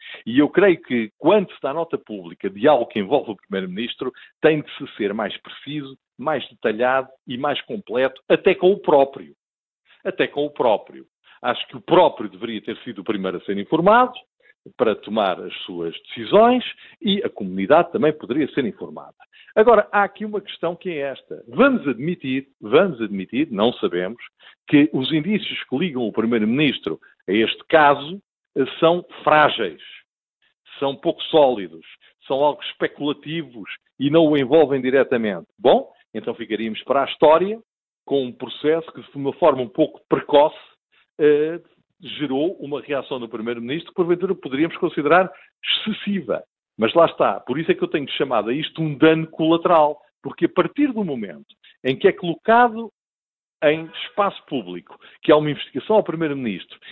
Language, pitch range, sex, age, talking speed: Portuguese, 130-190 Hz, male, 50-69, 165 wpm